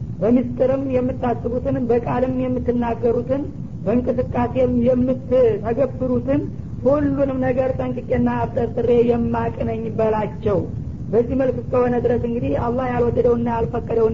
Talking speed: 75 wpm